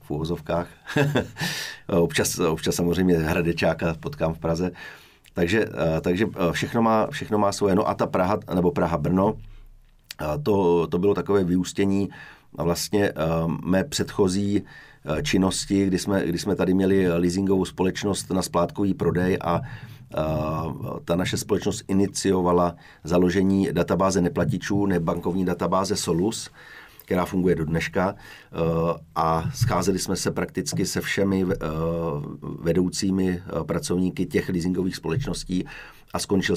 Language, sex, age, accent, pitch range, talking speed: English, male, 40-59, Czech, 85-95 Hz, 115 wpm